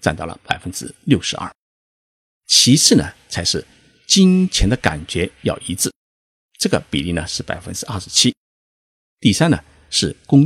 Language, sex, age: Chinese, male, 50-69